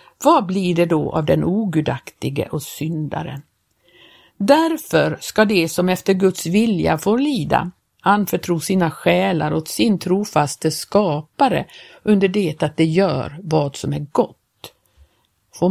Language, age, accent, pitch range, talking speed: Swedish, 50-69, native, 165-220 Hz, 135 wpm